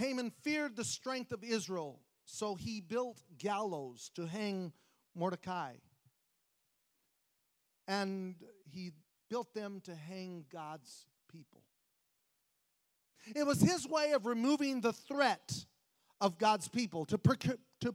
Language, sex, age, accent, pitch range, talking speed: English, male, 40-59, American, 160-230 Hz, 115 wpm